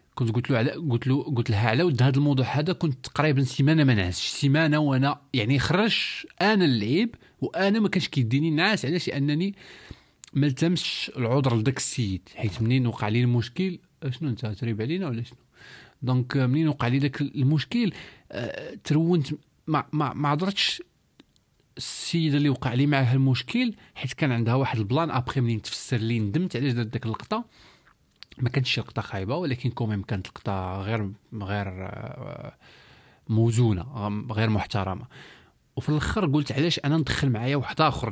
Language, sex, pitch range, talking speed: Arabic, male, 115-150 Hz, 160 wpm